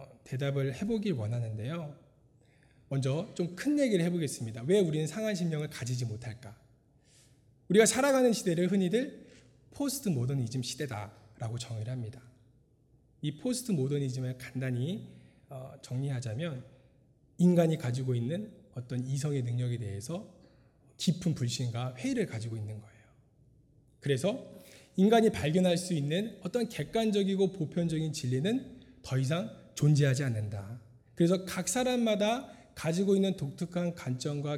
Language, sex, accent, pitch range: Korean, male, native, 125-190 Hz